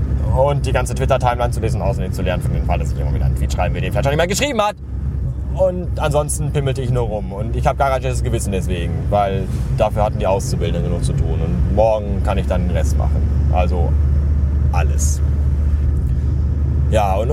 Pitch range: 70-120 Hz